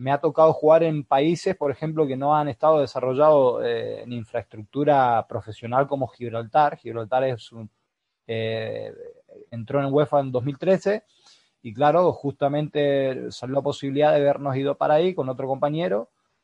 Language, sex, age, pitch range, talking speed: Spanish, male, 20-39, 125-150 Hz, 155 wpm